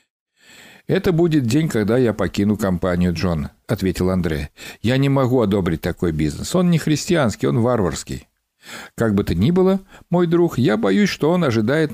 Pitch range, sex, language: 100-165 Hz, male, Russian